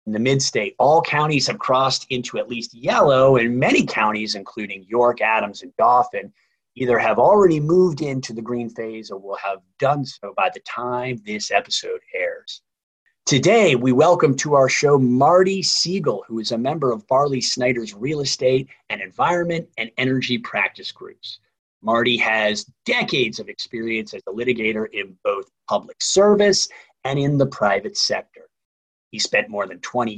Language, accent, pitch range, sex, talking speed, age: English, American, 110-145 Hz, male, 165 wpm, 30-49